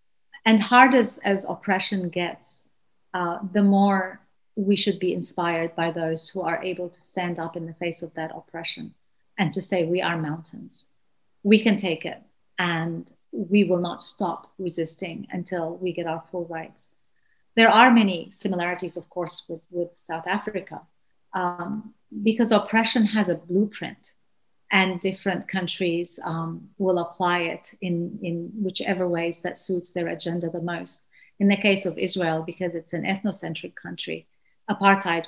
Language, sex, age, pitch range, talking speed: English, female, 40-59, 170-200 Hz, 155 wpm